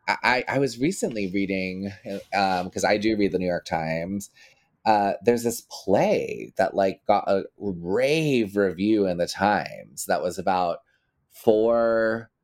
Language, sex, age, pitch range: English, male, 20-39, 90-110 Hz